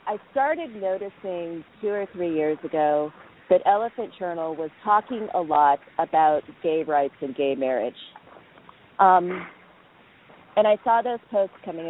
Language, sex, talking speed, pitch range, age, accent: English, female, 140 wpm, 155-195 Hz, 40-59, American